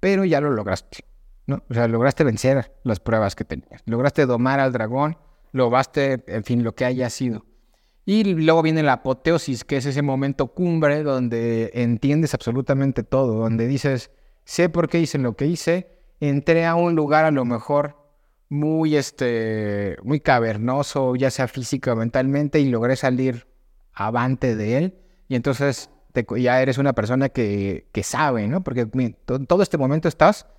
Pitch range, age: 120-150 Hz, 30-49